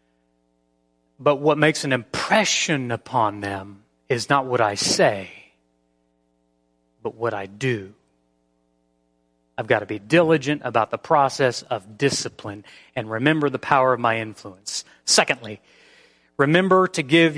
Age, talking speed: 30-49, 130 wpm